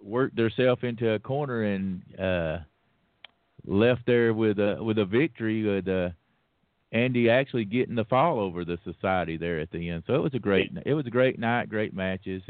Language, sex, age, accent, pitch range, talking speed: English, male, 50-69, American, 100-125 Hz, 190 wpm